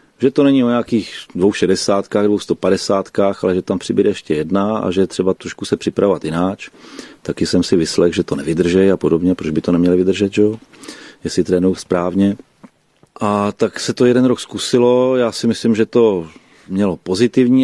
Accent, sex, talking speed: native, male, 185 wpm